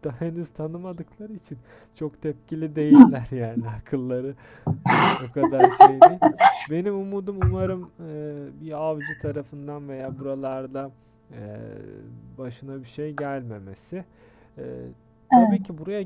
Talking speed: 110 wpm